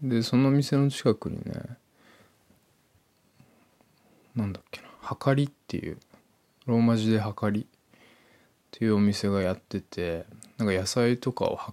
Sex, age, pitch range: male, 20-39, 100-125 Hz